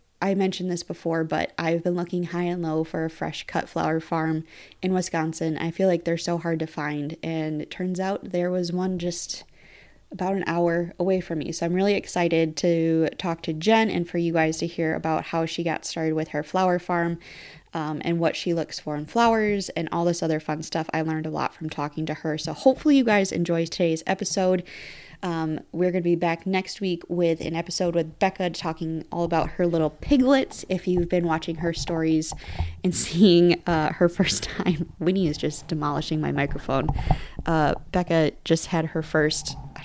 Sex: female